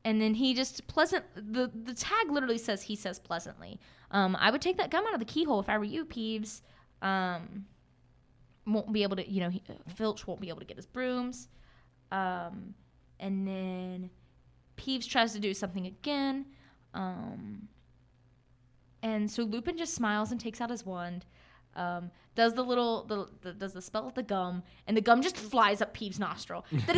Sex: female